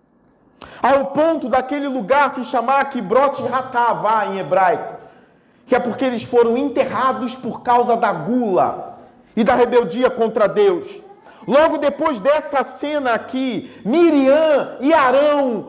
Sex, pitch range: male, 260-310 Hz